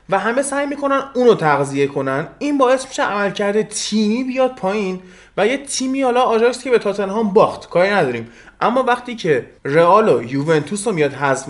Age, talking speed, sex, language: 20-39, 170 wpm, male, Persian